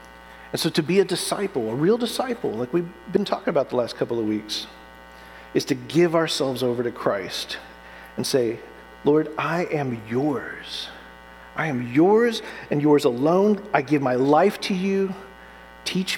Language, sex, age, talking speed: English, male, 40-59, 165 wpm